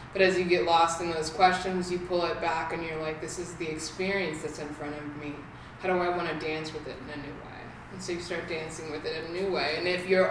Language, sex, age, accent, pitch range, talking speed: English, female, 20-39, American, 160-185 Hz, 290 wpm